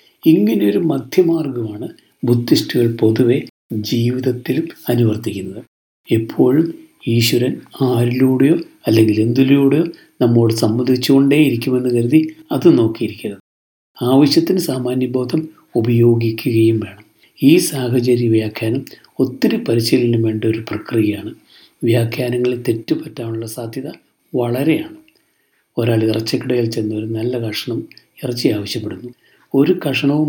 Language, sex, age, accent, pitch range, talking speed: Malayalam, male, 60-79, native, 115-150 Hz, 85 wpm